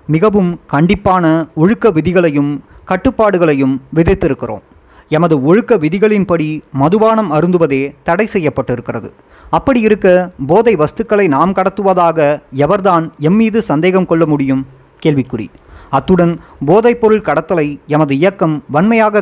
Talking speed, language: 100 wpm, Tamil